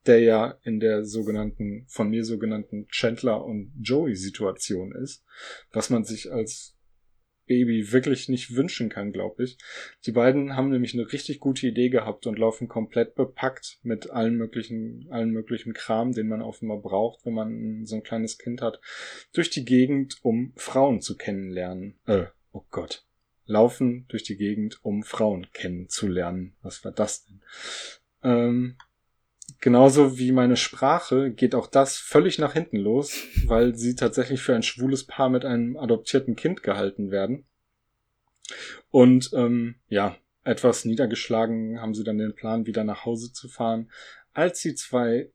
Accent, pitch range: German, 110-130 Hz